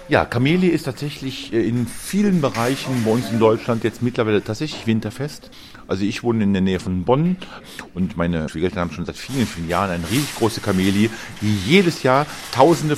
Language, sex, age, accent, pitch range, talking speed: German, male, 40-59, German, 100-130 Hz, 185 wpm